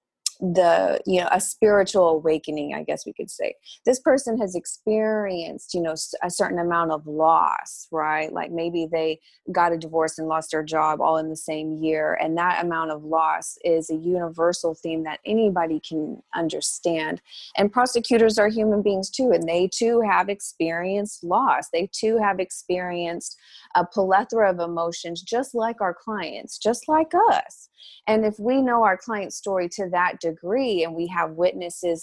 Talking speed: 170 wpm